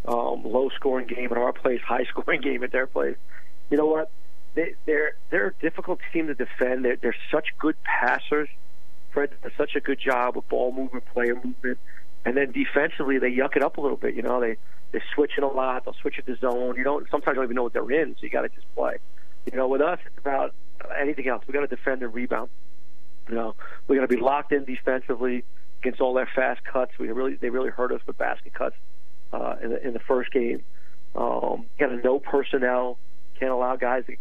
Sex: male